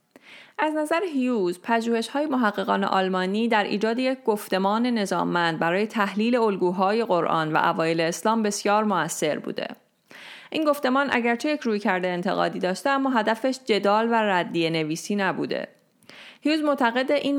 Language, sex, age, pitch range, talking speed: Persian, female, 30-49, 185-235 Hz, 135 wpm